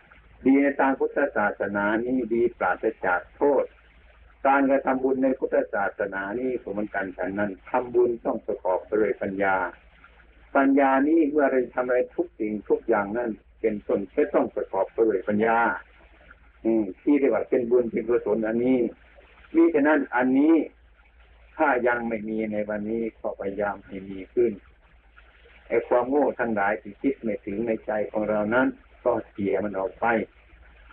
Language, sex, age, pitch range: Thai, male, 60-79, 100-130 Hz